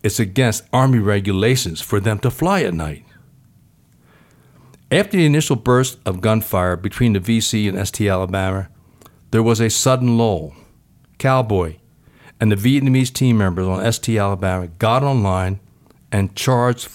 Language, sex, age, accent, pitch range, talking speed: English, male, 60-79, American, 100-130 Hz, 140 wpm